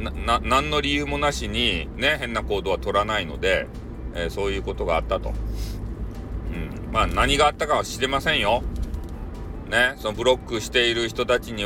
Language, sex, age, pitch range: Japanese, male, 40-59, 85-120 Hz